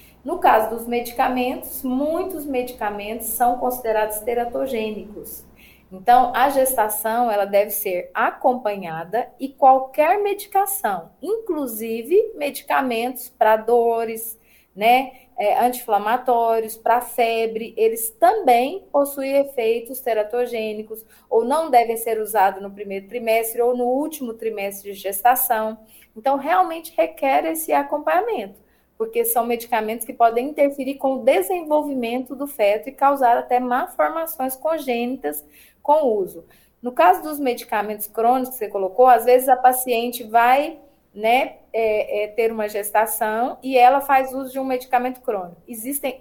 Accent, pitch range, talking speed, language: Brazilian, 225-275 Hz, 125 wpm, Portuguese